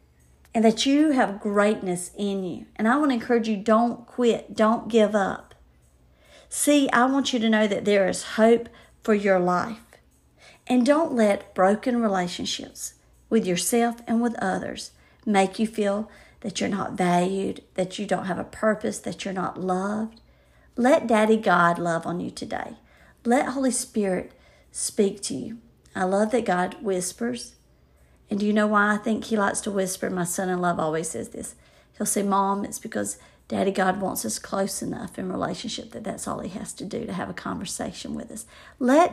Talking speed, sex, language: 185 wpm, female, English